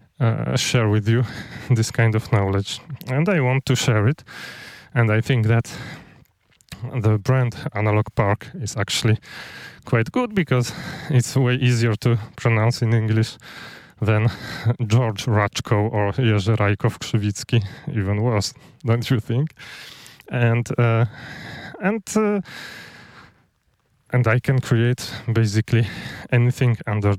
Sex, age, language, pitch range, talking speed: male, 20-39, English, 110-130 Hz, 125 wpm